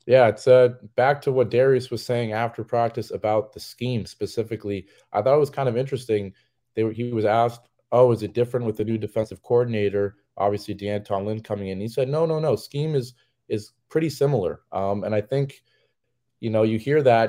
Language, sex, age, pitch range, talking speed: English, male, 30-49, 100-120 Hz, 205 wpm